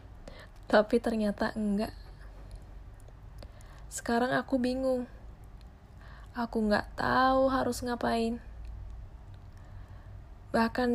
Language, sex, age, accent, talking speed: Indonesian, female, 10-29, native, 65 wpm